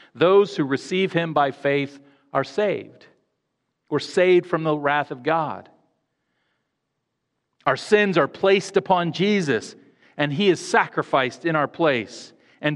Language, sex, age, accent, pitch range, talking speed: English, male, 40-59, American, 140-180 Hz, 135 wpm